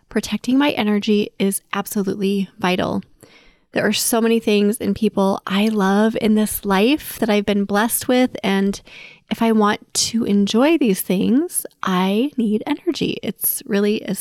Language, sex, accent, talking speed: English, female, American, 155 wpm